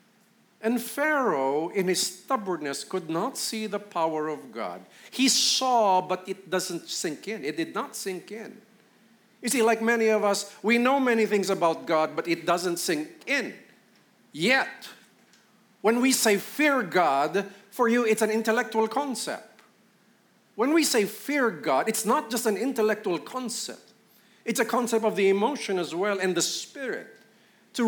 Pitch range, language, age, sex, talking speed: 200-245 Hz, English, 50-69, male, 165 wpm